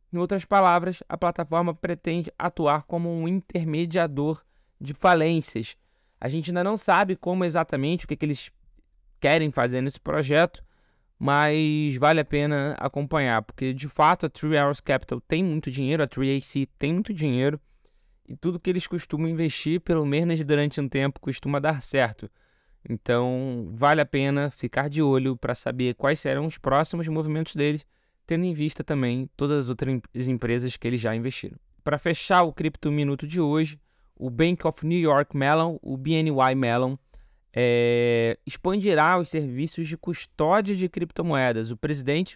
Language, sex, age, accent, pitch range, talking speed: Portuguese, male, 20-39, Brazilian, 135-170 Hz, 160 wpm